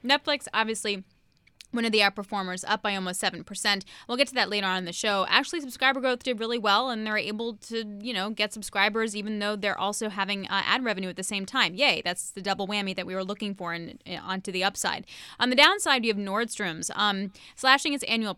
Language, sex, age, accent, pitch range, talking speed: English, female, 10-29, American, 195-245 Hz, 230 wpm